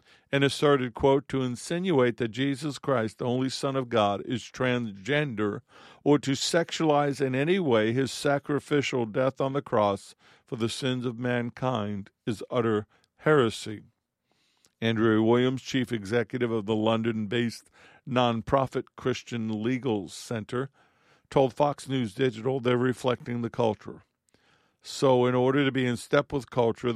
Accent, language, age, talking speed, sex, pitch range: American, English, 50-69, 140 wpm, male, 115-140 Hz